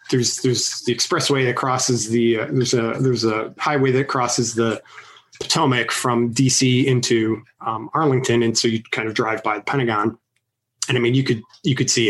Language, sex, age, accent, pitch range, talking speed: English, male, 30-49, American, 120-140 Hz, 195 wpm